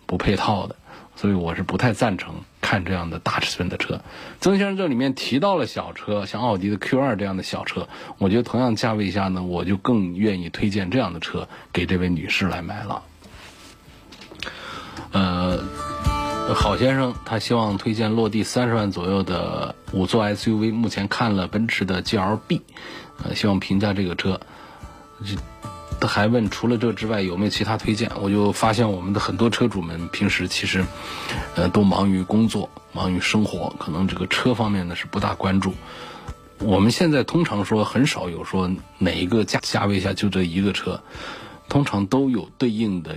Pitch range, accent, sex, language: 95-115 Hz, native, male, Chinese